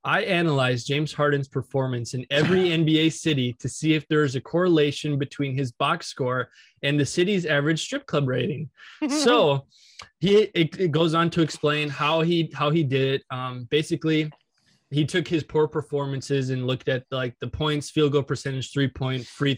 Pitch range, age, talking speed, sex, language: 135-160 Hz, 20-39, 180 wpm, male, English